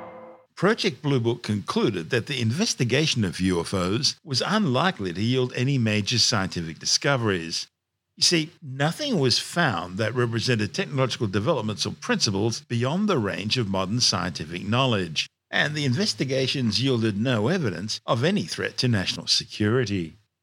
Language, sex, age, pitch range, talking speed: English, male, 50-69, 105-135 Hz, 140 wpm